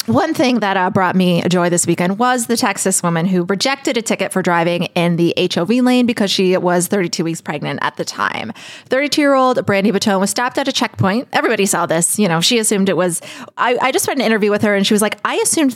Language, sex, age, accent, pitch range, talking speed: English, female, 20-39, American, 180-235 Hz, 240 wpm